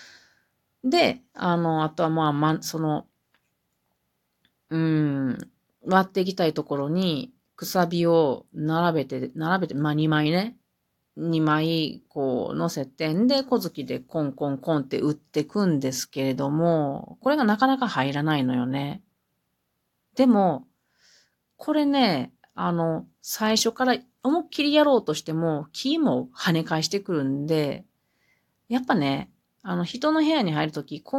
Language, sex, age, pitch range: Japanese, female, 40-59, 150-250 Hz